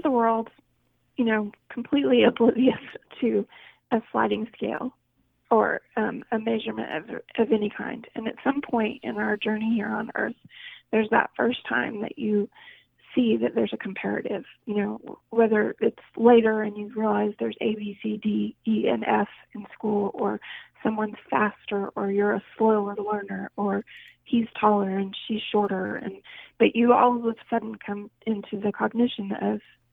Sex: female